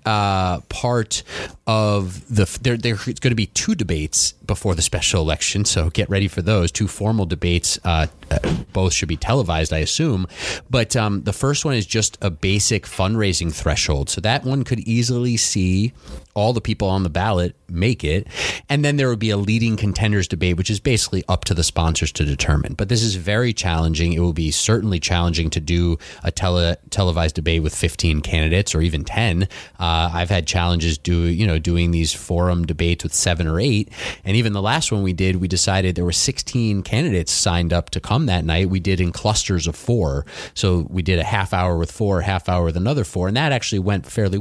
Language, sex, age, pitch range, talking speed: English, male, 30-49, 85-110 Hz, 210 wpm